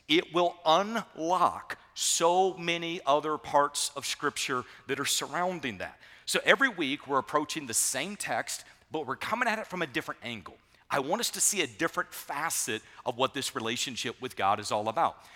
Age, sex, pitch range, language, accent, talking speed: 50-69, male, 130-180 Hz, English, American, 185 wpm